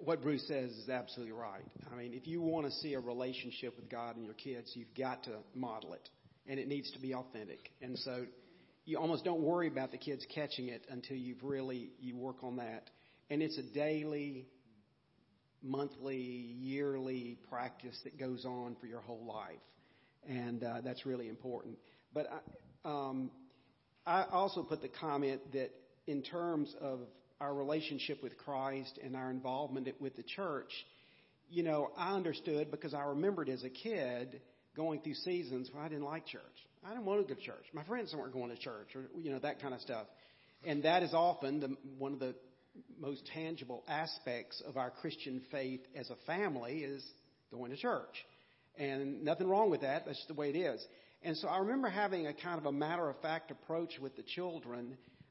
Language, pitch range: English, 125-150 Hz